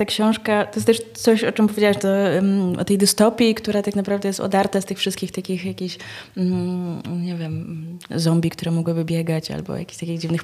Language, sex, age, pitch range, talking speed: Polish, female, 20-39, 175-200 Hz, 200 wpm